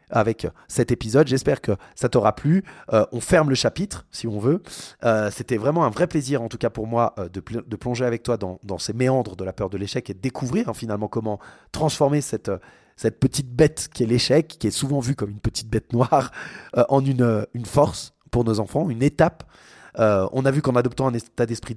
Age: 30-49